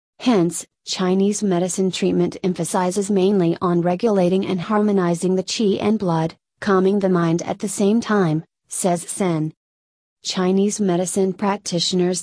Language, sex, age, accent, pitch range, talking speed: English, female, 30-49, American, 175-200 Hz, 130 wpm